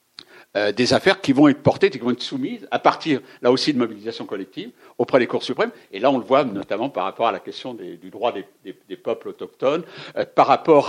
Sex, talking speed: male, 240 wpm